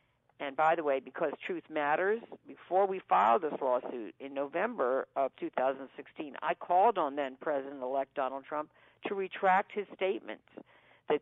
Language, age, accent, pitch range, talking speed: English, 50-69, American, 135-175 Hz, 145 wpm